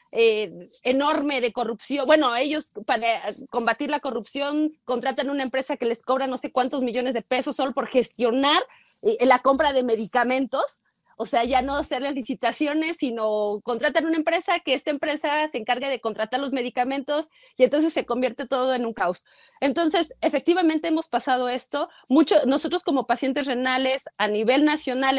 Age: 30-49